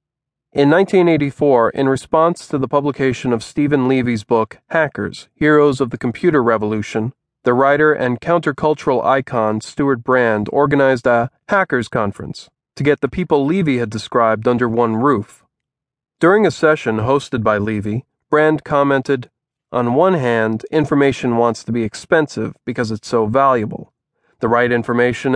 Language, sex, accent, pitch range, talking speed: English, male, American, 120-145 Hz, 145 wpm